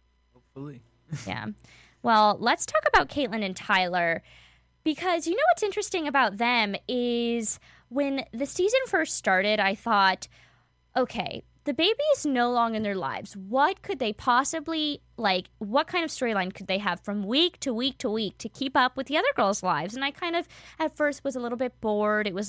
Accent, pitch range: American, 195-265 Hz